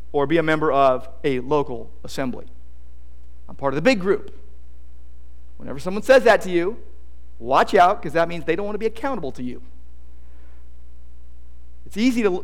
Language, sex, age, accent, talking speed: English, male, 50-69, American, 180 wpm